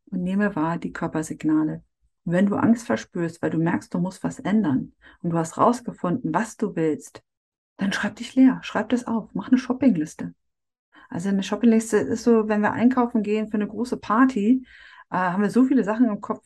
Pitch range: 180-235 Hz